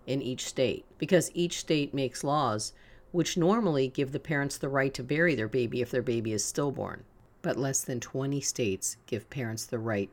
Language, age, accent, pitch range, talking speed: English, 50-69, American, 105-140 Hz, 195 wpm